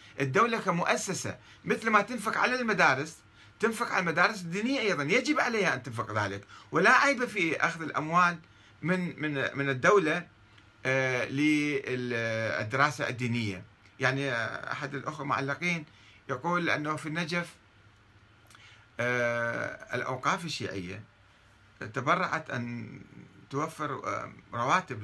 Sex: male